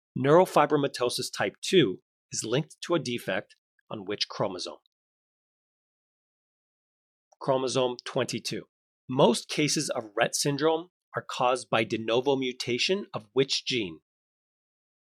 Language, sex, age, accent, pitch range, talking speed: English, male, 30-49, American, 120-150 Hz, 105 wpm